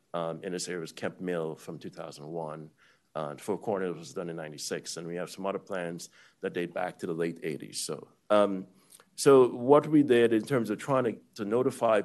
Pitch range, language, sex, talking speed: 90-115 Hz, English, male, 205 wpm